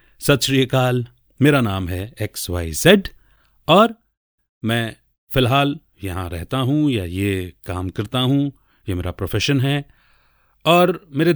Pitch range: 105-150 Hz